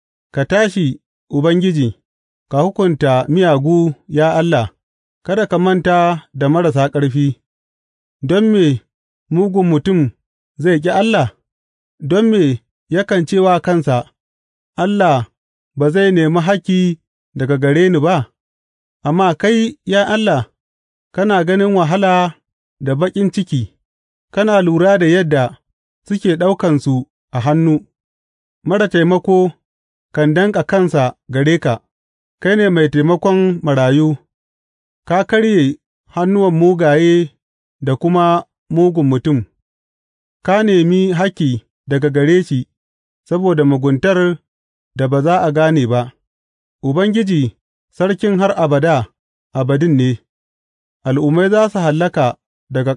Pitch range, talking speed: 130-185 Hz, 85 wpm